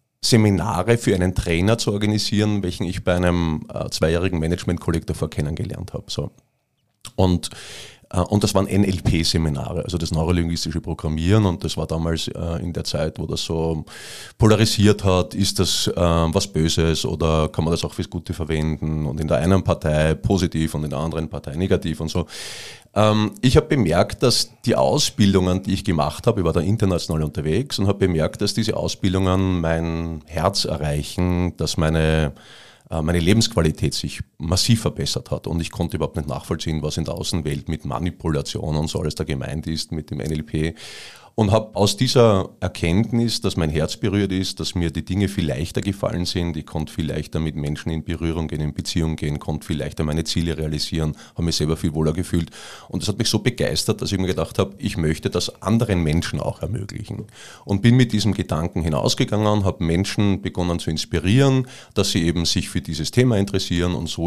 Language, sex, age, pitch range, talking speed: German, male, 30-49, 80-100 Hz, 185 wpm